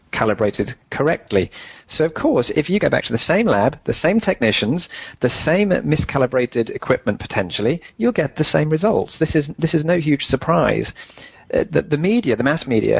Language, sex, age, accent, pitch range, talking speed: English, male, 30-49, British, 115-150 Hz, 185 wpm